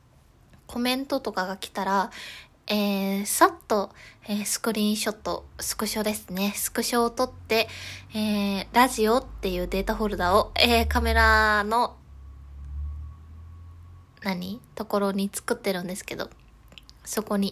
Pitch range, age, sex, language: 195-240 Hz, 20-39, female, Japanese